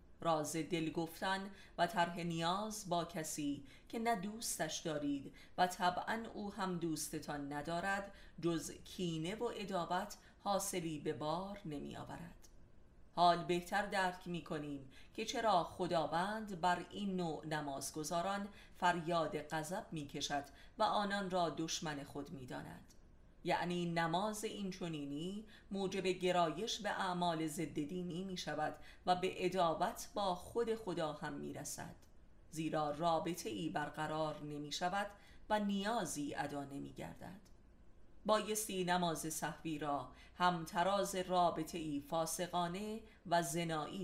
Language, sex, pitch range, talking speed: Persian, female, 155-195 Hz, 125 wpm